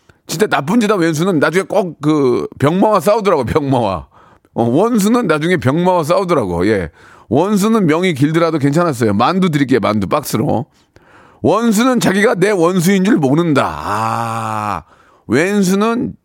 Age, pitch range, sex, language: 40-59, 130-200 Hz, male, Korean